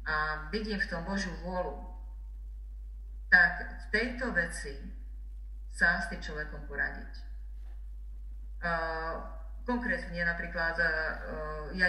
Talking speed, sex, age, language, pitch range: 90 wpm, female, 40-59, Slovak, 140-175 Hz